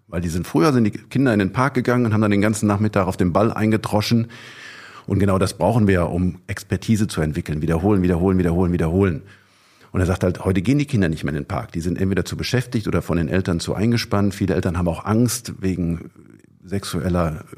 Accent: German